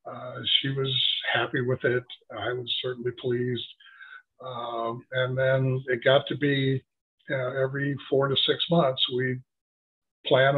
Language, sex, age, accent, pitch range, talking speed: English, male, 50-69, American, 120-145 Hz, 135 wpm